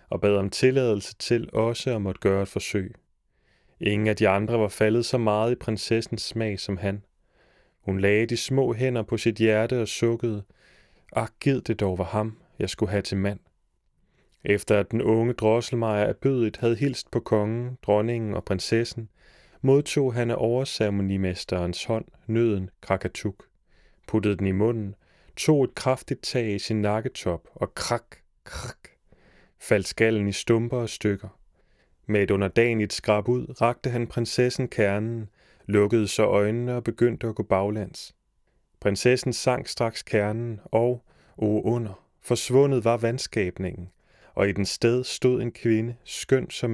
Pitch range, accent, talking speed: 100-120 Hz, native, 155 wpm